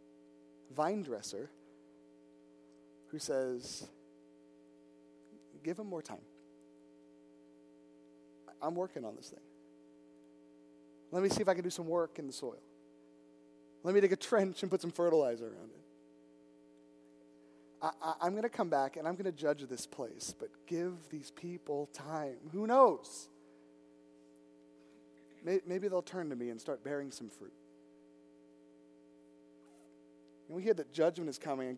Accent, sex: American, male